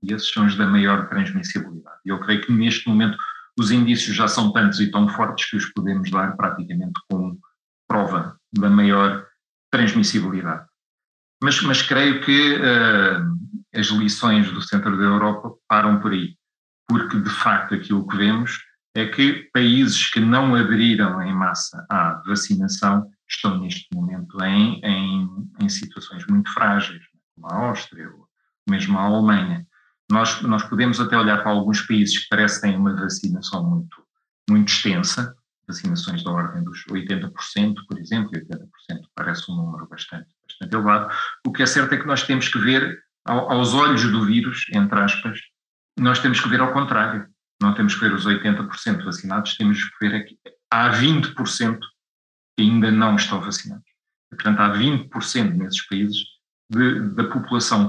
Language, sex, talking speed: Portuguese, male, 155 wpm